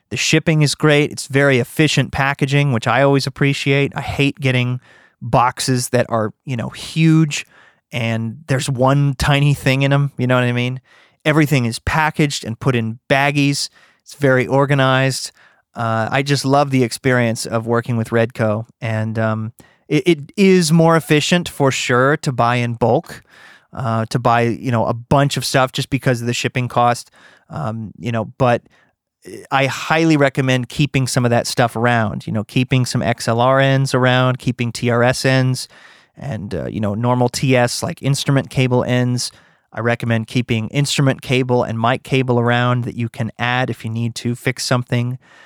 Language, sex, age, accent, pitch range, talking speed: English, male, 30-49, American, 120-140 Hz, 175 wpm